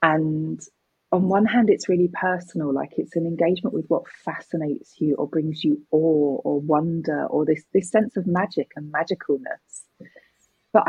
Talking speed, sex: 165 wpm, female